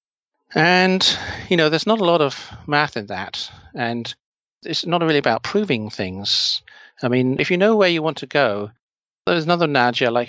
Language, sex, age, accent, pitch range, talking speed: English, male, 40-59, British, 110-140 Hz, 185 wpm